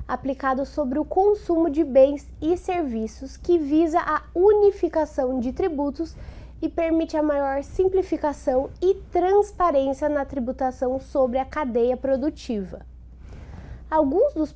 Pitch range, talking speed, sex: 255-340 Hz, 120 wpm, female